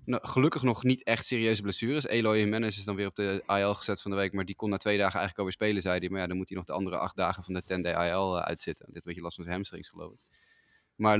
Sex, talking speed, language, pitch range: male, 305 wpm, Dutch, 100-115 Hz